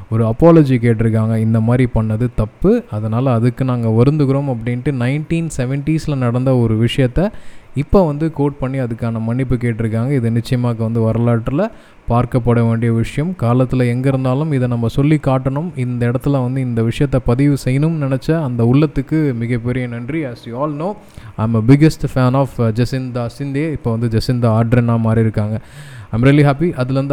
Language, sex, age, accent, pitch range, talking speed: Tamil, male, 20-39, native, 120-140 Hz, 155 wpm